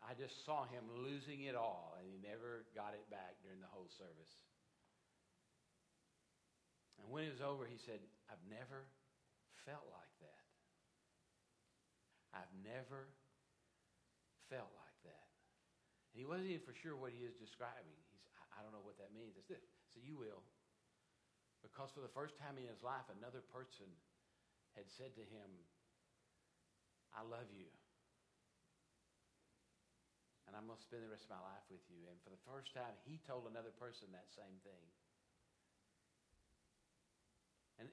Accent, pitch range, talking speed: American, 105-135 Hz, 155 wpm